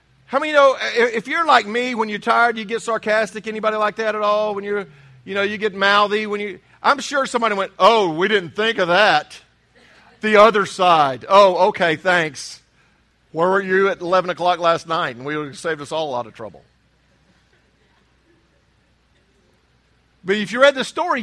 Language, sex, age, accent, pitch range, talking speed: English, male, 50-69, American, 200-265 Hz, 190 wpm